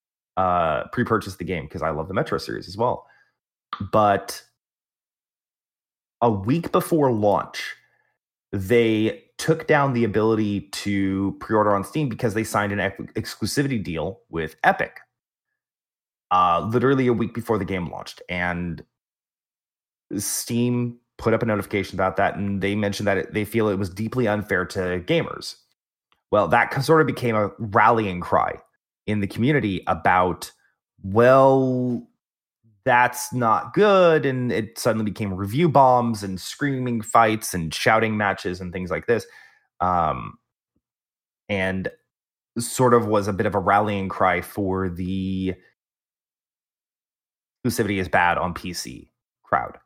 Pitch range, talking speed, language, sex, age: 95-120 Hz, 135 wpm, English, male, 30-49